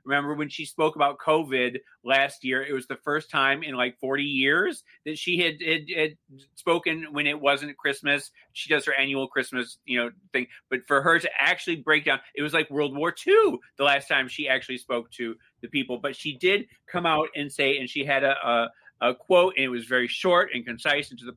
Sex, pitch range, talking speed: male, 135-180 Hz, 225 wpm